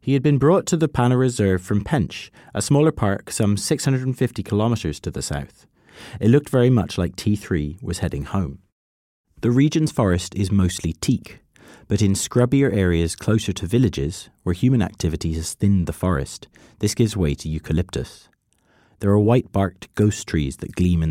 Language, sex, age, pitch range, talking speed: English, male, 30-49, 85-115 Hz, 175 wpm